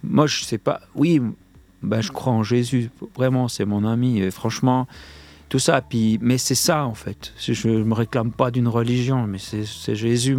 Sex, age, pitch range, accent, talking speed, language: male, 40-59, 105-140 Hz, French, 210 wpm, French